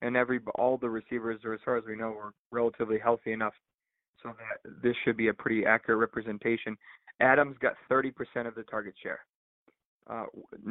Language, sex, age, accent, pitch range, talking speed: English, male, 30-49, American, 115-130 Hz, 175 wpm